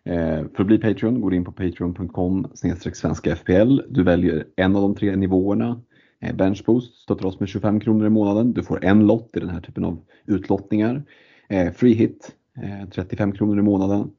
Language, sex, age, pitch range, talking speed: Swedish, male, 30-49, 95-110 Hz, 165 wpm